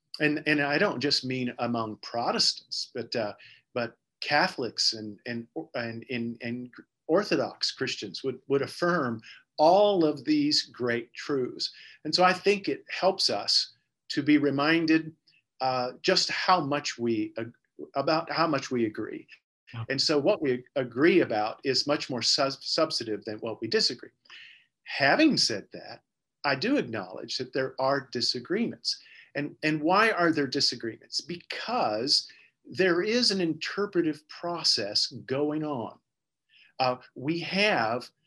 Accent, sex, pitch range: American, male, 125-165 Hz